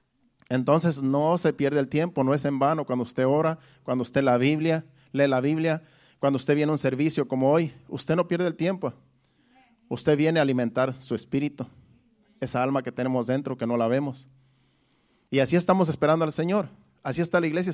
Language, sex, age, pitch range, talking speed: Spanish, male, 40-59, 135-170 Hz, 195 wpm